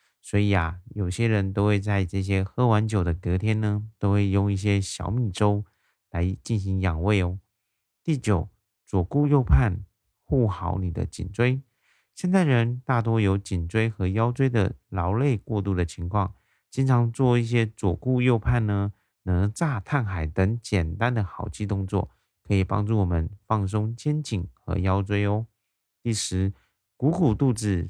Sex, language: male, Chinese